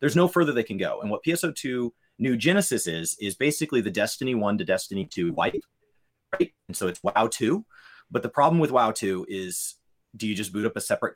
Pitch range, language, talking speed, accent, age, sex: 105-150 Hz, English, 215 wpm, American, 30-49, male